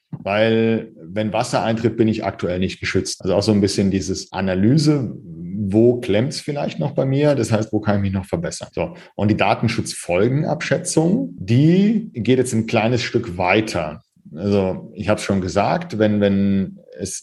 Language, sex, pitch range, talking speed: German, male, 105-135 Hz, 175 wpm